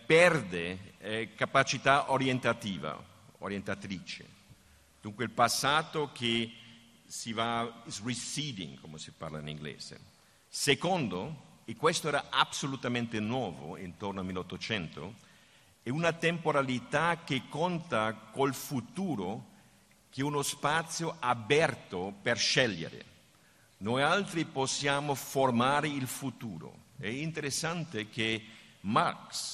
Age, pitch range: 50-69, 110-140 Hz